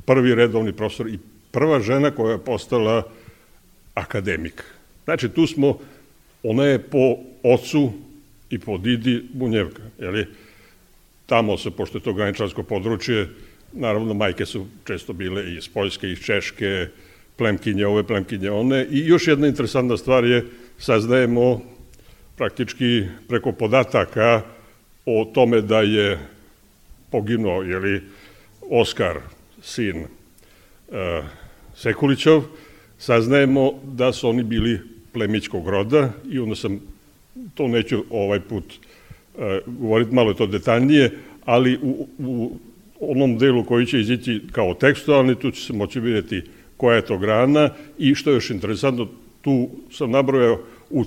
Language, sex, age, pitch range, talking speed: Croatian, male, 60-79, 105-130 Hz, 125 wpm